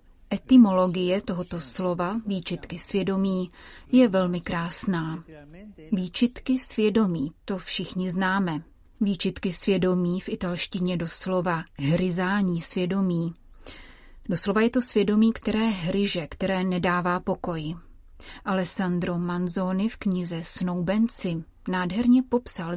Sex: female